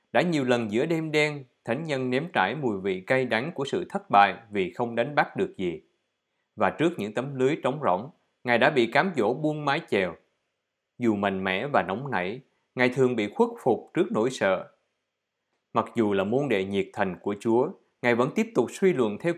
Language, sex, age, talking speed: Vietnamese, male, 20-39, 215 wpm